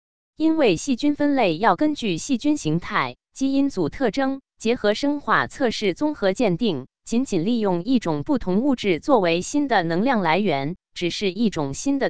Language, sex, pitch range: Chinese, female, 180-270 Hz